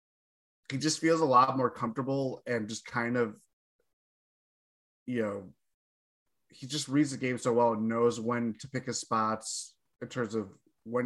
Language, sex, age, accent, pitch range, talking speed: English, male, 20-39, American, 110-130 Hz, 170 wpm